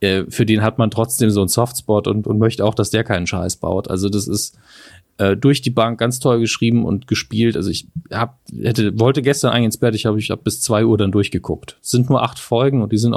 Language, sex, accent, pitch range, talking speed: German, male, German, 105-125 Hz, 250 wpm